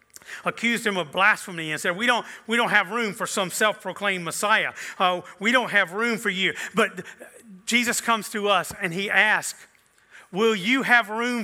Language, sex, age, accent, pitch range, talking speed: English, male, 40-59, American, 180-235 Hz, 175 wpm